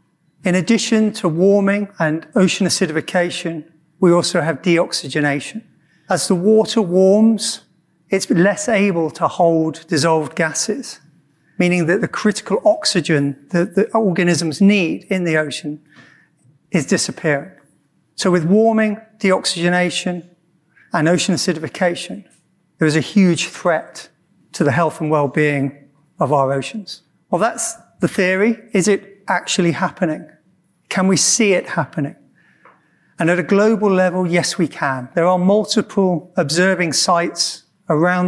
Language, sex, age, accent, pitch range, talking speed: English, male, 40-59, British, 160-195 Hz, 130 wpm